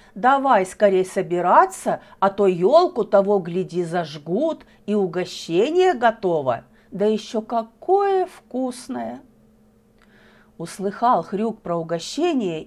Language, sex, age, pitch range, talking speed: Russian, female, 40-59, 190-255 Hz, 95 wpm